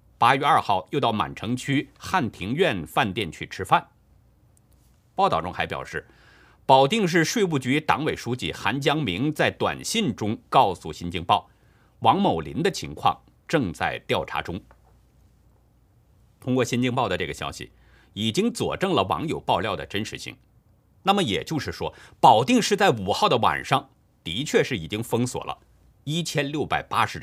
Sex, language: male, Chinese